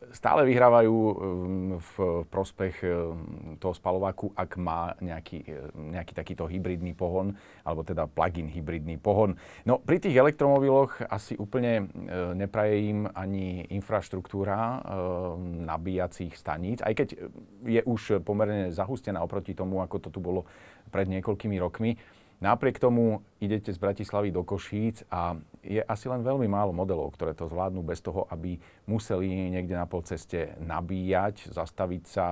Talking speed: 135 wpm